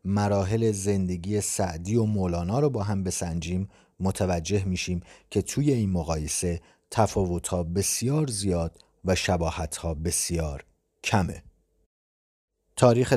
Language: Persian